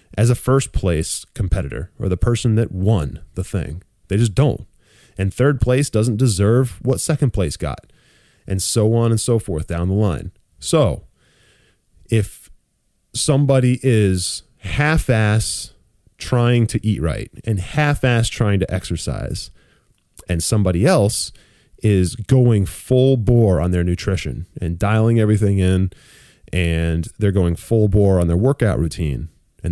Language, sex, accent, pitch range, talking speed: English, male, American, 90-120 Hz, 145 wpm